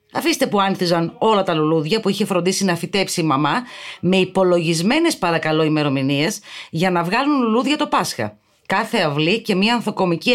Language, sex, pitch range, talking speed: Greek, female, 165-255 Hz, 160 wpm